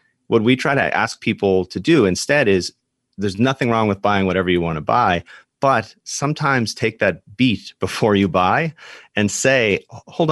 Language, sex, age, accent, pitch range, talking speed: English, male, 30-49, American, 90-110 Hz, 175 wpm